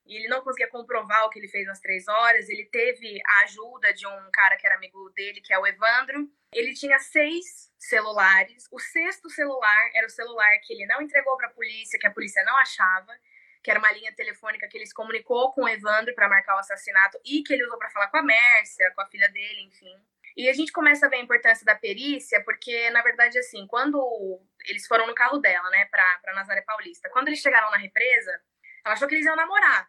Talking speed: 230 wpm